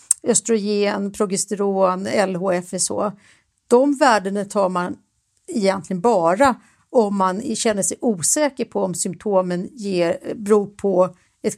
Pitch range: 190-245 Hz